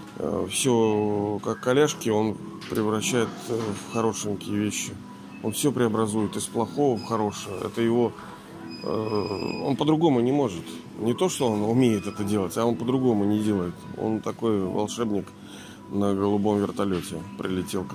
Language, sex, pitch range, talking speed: Russian, male, 105-130 Hz, 130 wpm